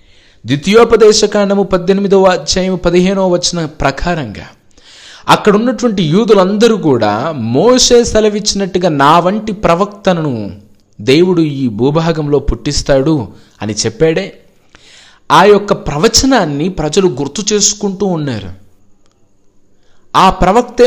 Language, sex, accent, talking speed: Telugu, male, native, 90 wpm